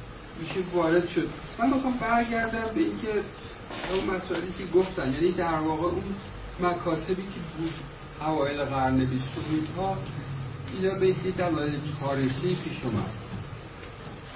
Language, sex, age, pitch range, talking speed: Persian, male, 50-69, 130-175 Hz, 130 wpm